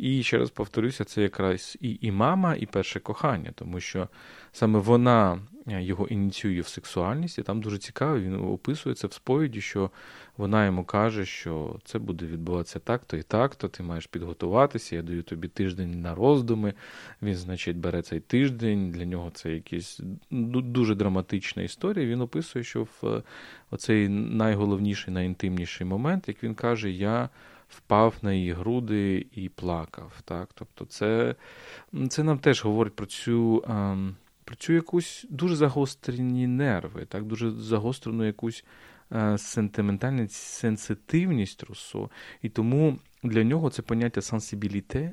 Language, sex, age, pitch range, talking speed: Ukrainian, male, 20-39, 95-120 Hz, 140 wpm